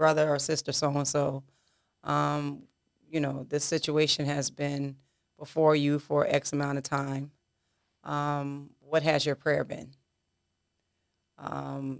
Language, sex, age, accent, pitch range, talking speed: English, female, 30-49, American, 135-155 Hz, 120 wpm